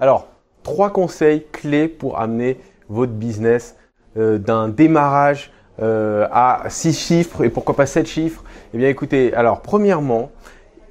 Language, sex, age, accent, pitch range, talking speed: French, male, 20-39, French, 130-190 Hz, 145 wpm